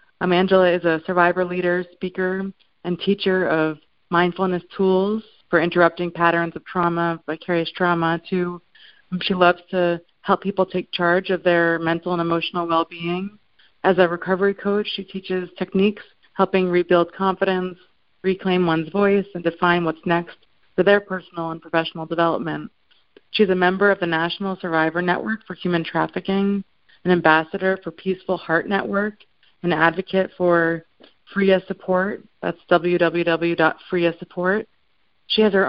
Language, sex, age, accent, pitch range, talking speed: English, female, 30-49, American, 170-190 Hz, 140 wpm